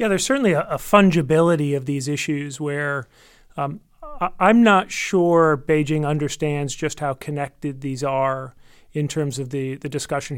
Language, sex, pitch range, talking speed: English, male, 135-155 Hz, 160 wpm